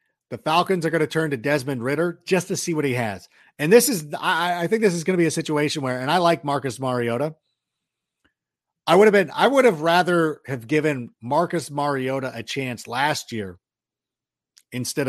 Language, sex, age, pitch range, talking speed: English, male, 40-59, 125-165 Hz, 205 wpm